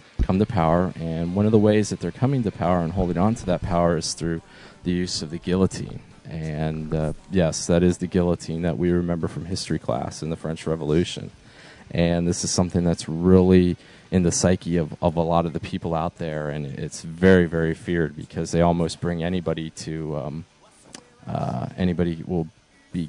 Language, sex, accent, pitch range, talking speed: English, male, American, 85-95 Hz, 200 wpm